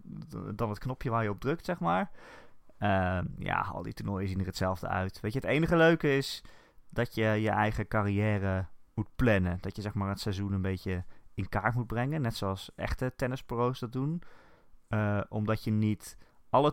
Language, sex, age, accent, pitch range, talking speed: Dutch, male, 20-39, Dutch, 95-130 Hz, 195 wpm